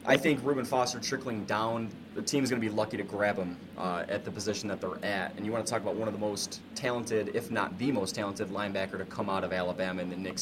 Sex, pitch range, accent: male, 100-120 Hz, American